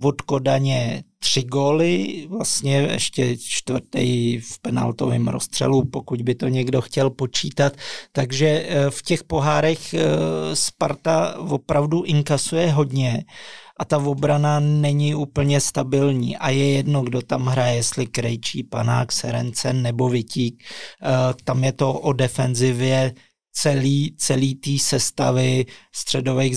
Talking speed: 115 wpm